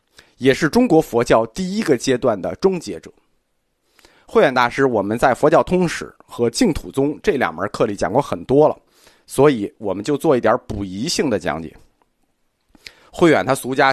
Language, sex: Chinese, male